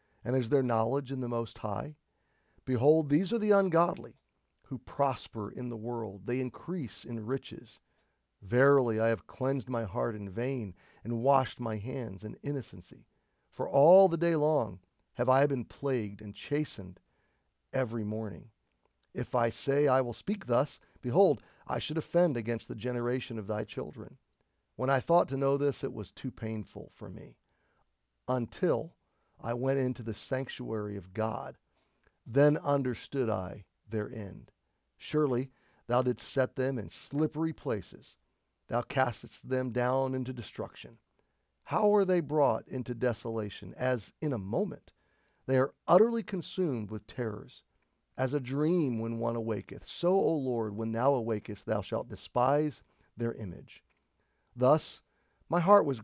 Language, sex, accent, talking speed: English, male, American, 150 wpm